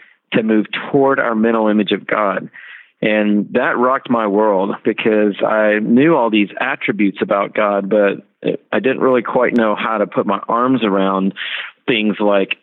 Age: 40-59